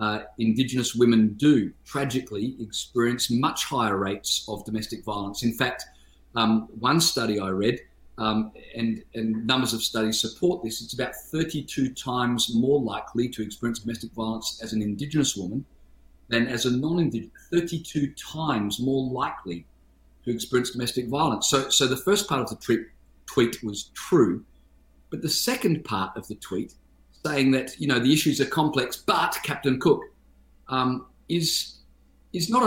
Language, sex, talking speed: English, male, 155 wpm